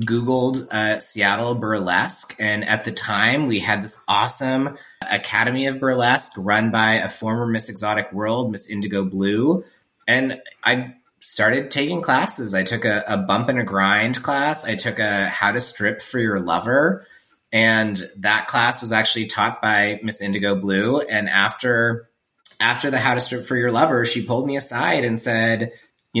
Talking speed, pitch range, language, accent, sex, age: 170 wpm, 110-130 Hz, English, American, male, 30-49